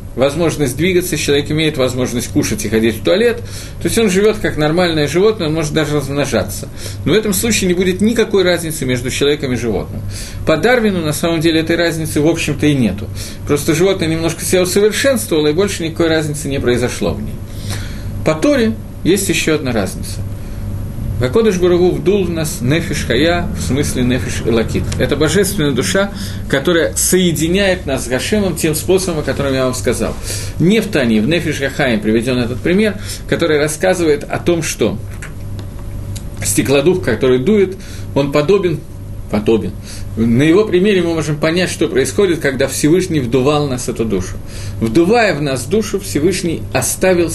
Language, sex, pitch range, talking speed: Russian, male, 110-170 Hz, 160 wpm